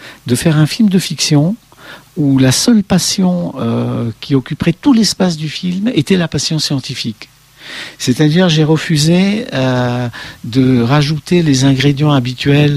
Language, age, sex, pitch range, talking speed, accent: French, 50-69, male, 110-155 Hz, 140 wpm, French